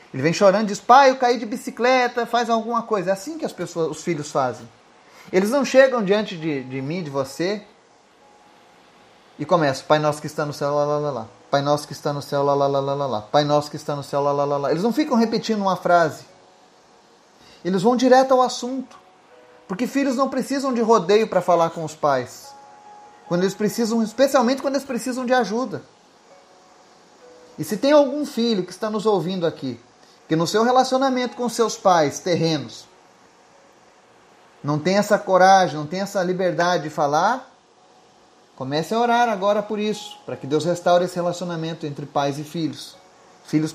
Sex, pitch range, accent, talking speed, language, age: male, 150-240 Hz, Brazilian, 190 wpm, Portuguese, 30-49